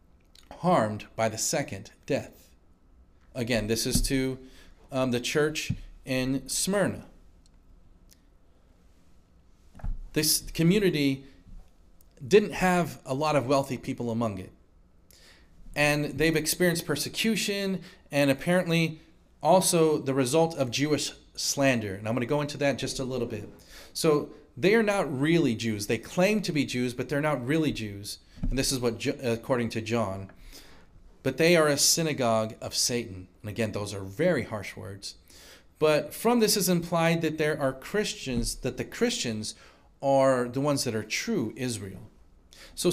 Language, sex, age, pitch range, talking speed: English, male, 40-59, 105-160 Hz, 145 wpm